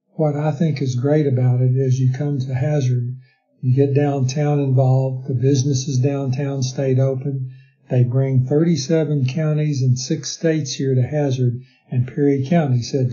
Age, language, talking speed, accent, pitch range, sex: 60-79, English, 160 wpm, American, 130-145 Hz, male